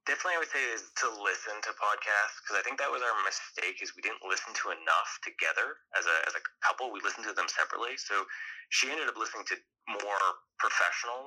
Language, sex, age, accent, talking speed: English, male, 20-39, American, 220 wpm